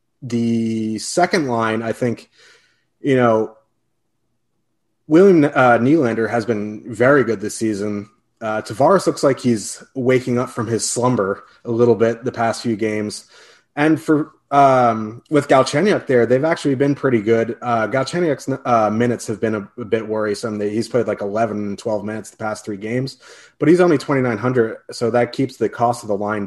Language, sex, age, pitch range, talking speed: English, male, 30-49, 110-125 Hz, 170 wpm